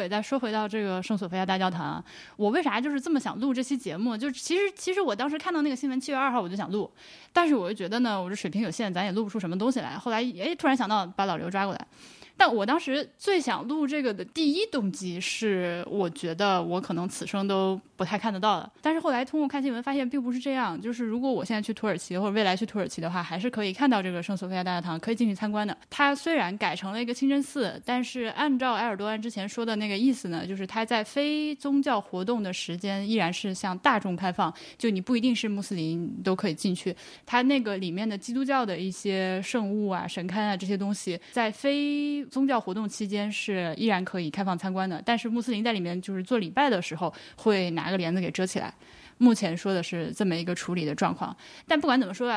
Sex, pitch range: female, 190-265 Hz